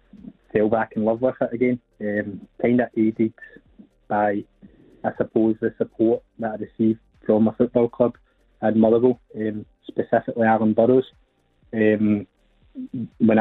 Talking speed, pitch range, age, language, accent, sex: 150 wpm, 110-120 Hz, 20-39, English, British, male